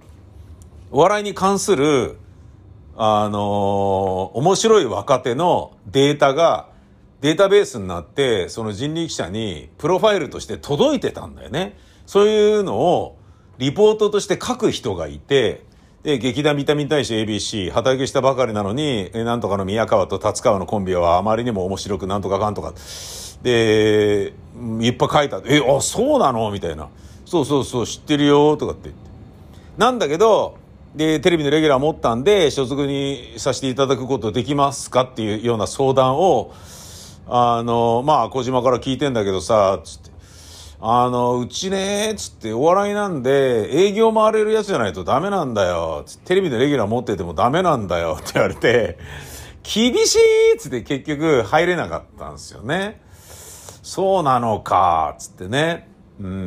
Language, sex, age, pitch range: Japanese, male, 50-69, 95-150 Hz